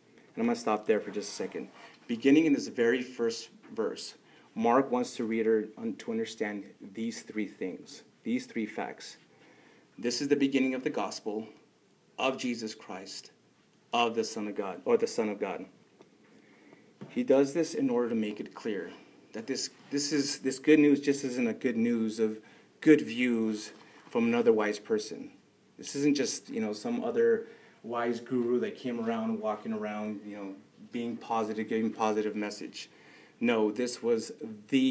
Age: 30-49